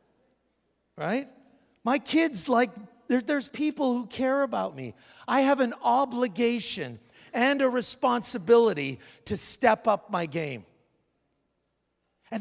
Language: English